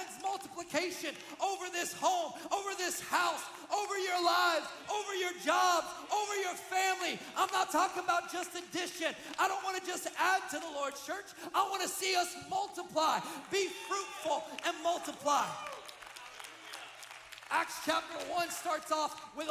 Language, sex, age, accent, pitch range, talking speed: English, male, 40-59, American, 280-360 Hz, 150 wpm